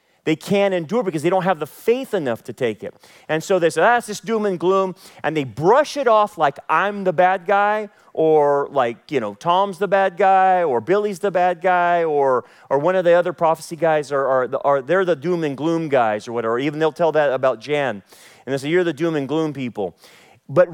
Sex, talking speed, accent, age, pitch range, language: male, 245 wpm, American, 40-59, 150-195 Hz, English